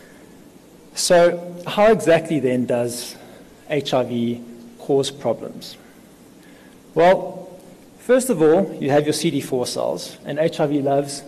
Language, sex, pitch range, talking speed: English, male, 135-180 Hz, 105 wpm